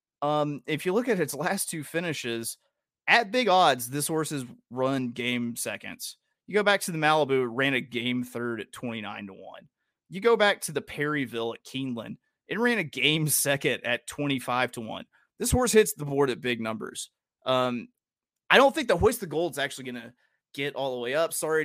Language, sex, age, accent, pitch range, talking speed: English, male, 30-49, American, 120-160 Hz, 210 wpm